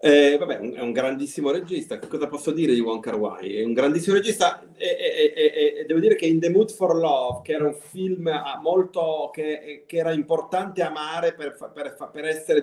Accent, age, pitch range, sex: native, 30-49, 130-165 Hz, male